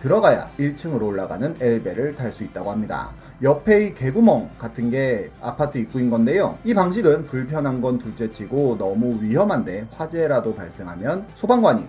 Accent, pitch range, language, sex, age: native, 115-175 Hz, Korean, male, 30-49